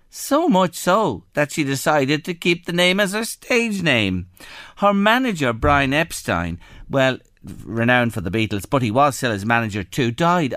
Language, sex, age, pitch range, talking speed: English, male, 50-69, 115-175 Hz, 175 wpm